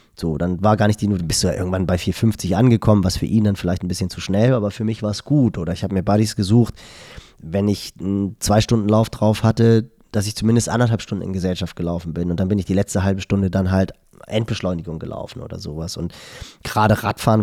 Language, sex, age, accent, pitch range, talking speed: German, male, 20-39, German, 95-110 Hz, 240 wpm